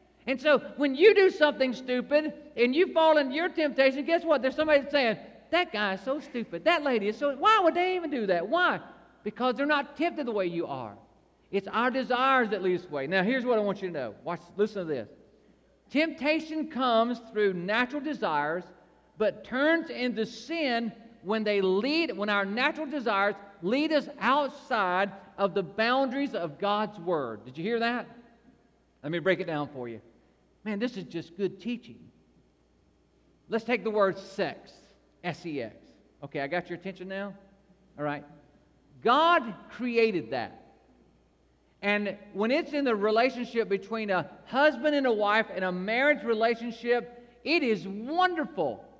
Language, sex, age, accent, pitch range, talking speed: English, male, 50-69, American, 195-280 Hz, 170 wpm